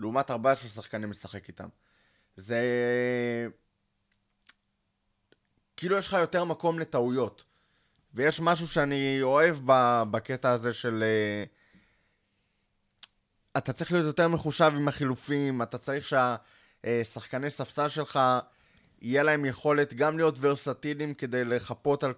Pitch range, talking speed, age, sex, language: 115-145 Hz, 110 wpm, 20-39, male, Hebrew